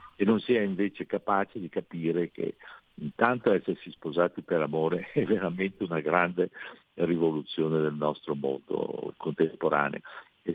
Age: 60-79